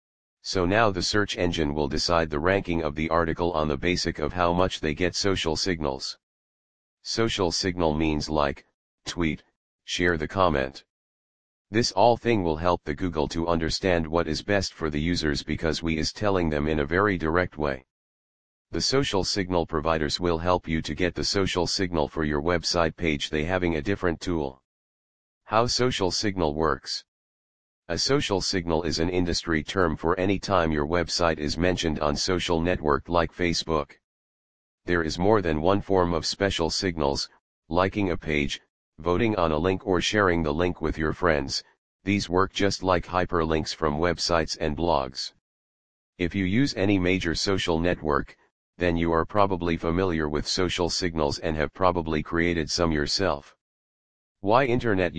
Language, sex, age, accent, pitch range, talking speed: English, male, 40-59, American, 80-95 Hz, 165 wpm